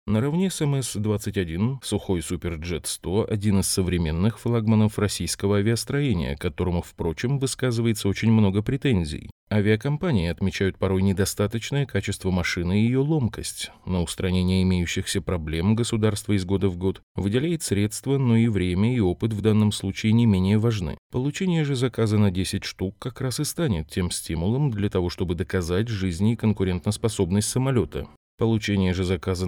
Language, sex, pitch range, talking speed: Russian, male, 90-120 Hz, 145 wpm